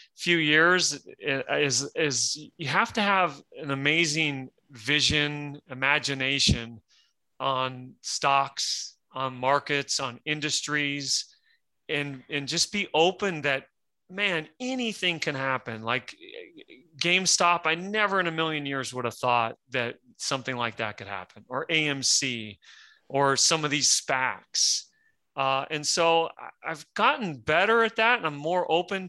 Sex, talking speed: male, 130 wpm